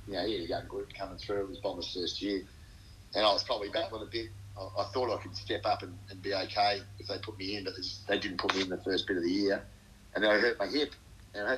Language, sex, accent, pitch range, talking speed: English, male, Australian, 90-105 Hz, 295 wpm